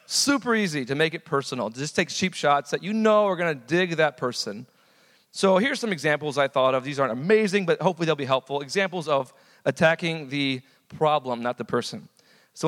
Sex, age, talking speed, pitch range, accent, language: male, 40-59, 205 wpm, 140-185 Hz, American, English